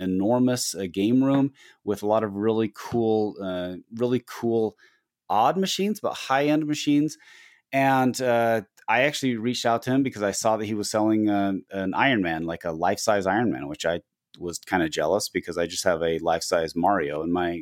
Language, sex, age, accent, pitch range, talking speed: English, male, 30-49, American, 105-140 Hz, 190 wpm